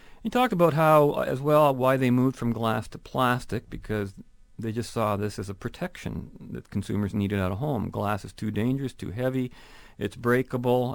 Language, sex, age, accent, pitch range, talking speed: English, male, 40-59, American, 100-125 Hz, 190 wpm